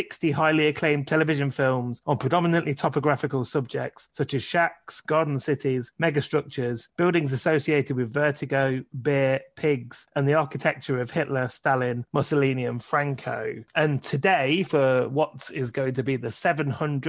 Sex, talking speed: male, 140 wpm